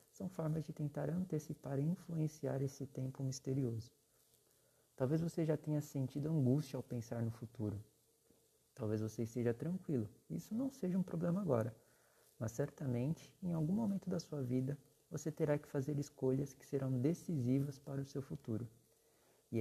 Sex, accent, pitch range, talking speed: male, Brazilian, 125-160 Hz, 155 wpm